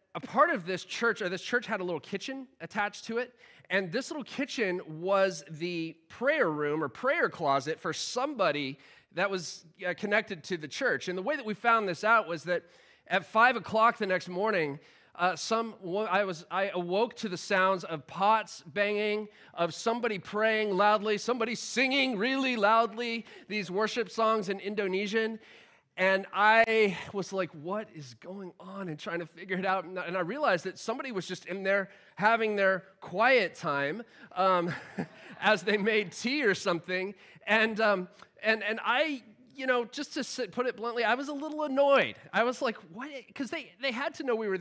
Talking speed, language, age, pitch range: 185 wpm, English, 30-49, 185-230 Hz